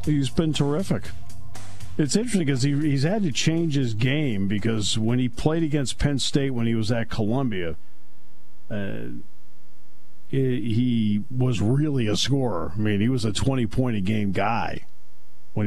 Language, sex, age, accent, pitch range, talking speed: English, male, 50-69, American, 75-125 Hz, 155 wpm